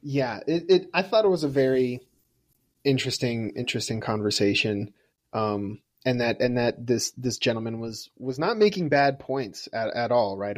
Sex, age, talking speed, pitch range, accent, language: male, 30-49, 170 wpm, 105-130 Hz, American, English